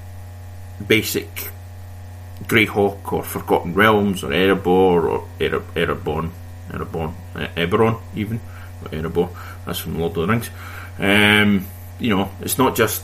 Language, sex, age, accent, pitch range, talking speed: English, male, 30-49, British, 90-100 Hz, 120 wpm